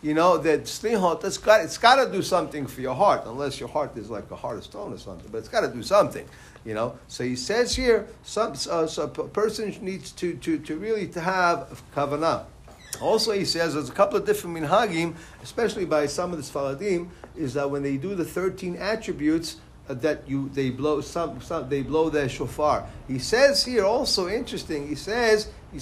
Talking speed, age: 210 wpm, 50-69